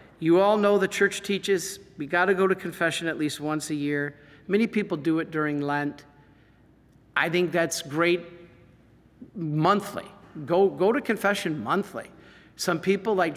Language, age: English, 50-69